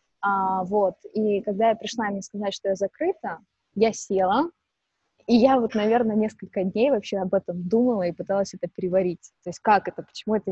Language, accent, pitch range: Russian, native, 195-230 Hz